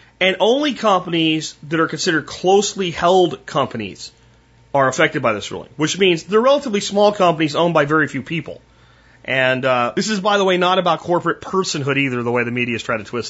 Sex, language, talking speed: male, English, 205 wpm